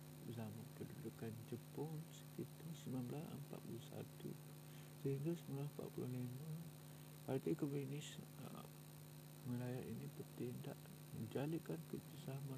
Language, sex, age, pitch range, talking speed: Malay, male, 50-69, 130-150 Hz, 70 wpm